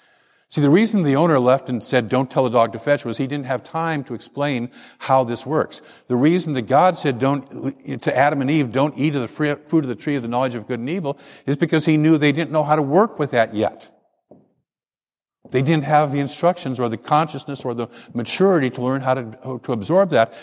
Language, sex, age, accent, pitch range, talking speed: English, male, 50-69, American, 125-160 Hz, 240 wpm